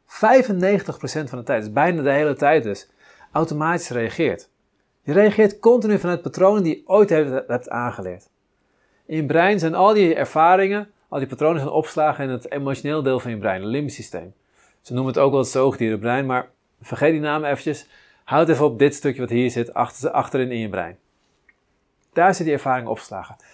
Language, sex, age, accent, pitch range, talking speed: Dutch, male, 40-59, Dutch, 120-180 Hz, 185 wpm